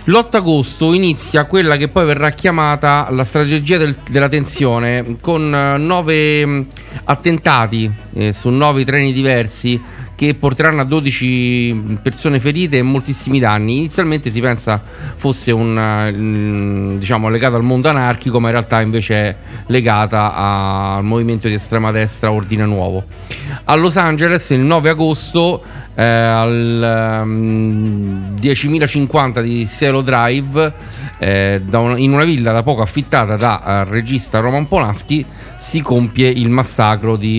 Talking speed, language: 140 wpm, Italian